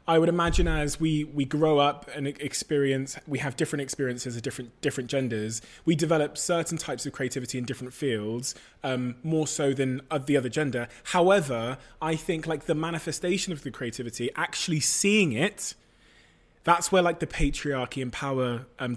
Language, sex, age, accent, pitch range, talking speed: English, male, 20-39, British, 130-165 Hz, 175 wpm